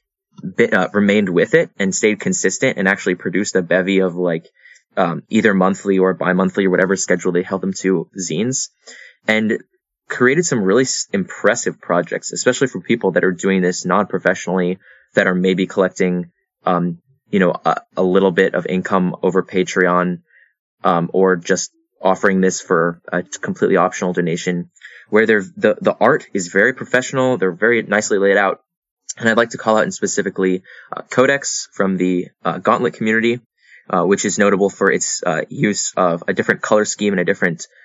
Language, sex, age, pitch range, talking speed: English, male, 20-39, 90-105 Hz, 180 wpm